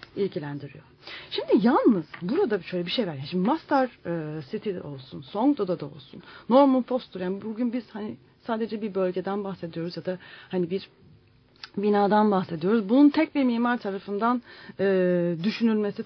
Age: 40-59